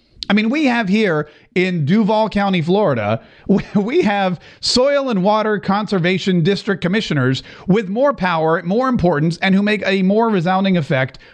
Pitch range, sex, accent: 135-215 Hz, male, American